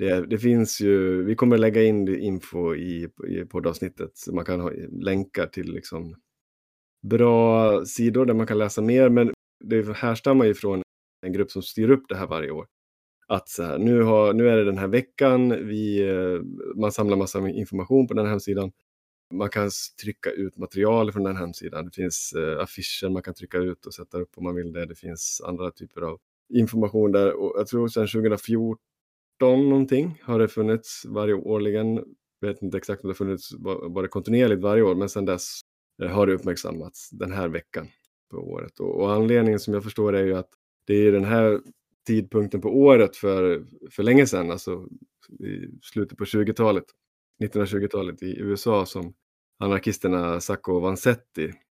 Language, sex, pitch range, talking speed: Swedish, male, 95-110 Hz, 185 wpm